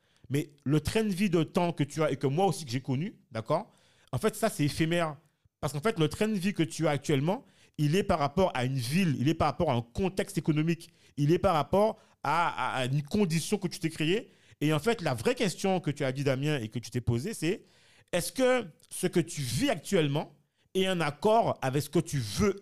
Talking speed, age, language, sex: 250 wpm, 40-59, French, male